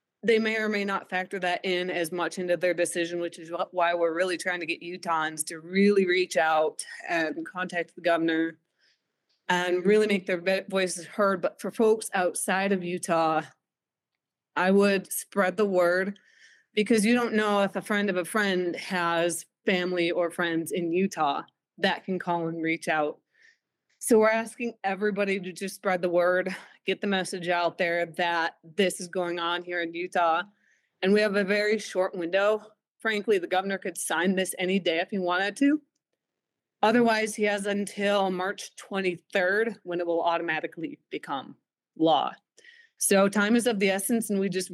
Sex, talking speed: female, 175 wpm